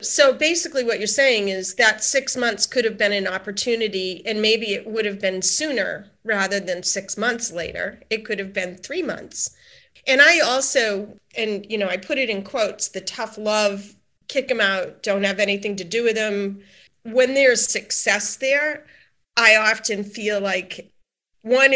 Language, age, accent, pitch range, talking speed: English, 40-59, American, 200-235 Hz, 180 wpm